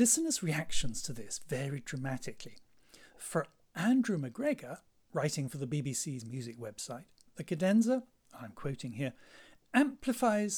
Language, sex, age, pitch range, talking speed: English, male, 60-79, 130-195 Hz, 120 wpm